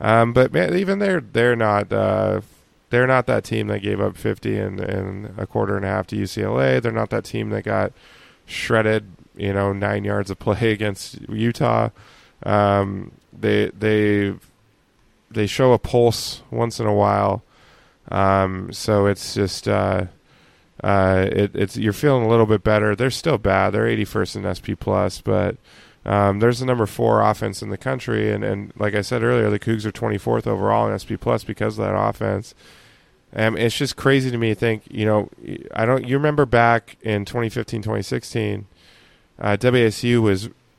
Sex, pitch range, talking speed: male, 100-115 Hz, 180 wpm